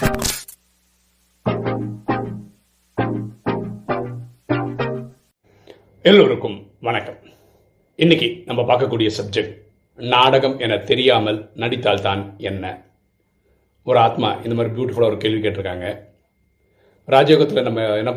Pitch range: 105-140 Hz